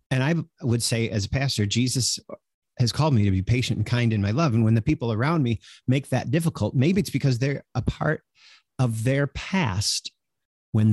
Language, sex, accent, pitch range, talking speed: English, male, American, 100-135 Hz, 210 wpm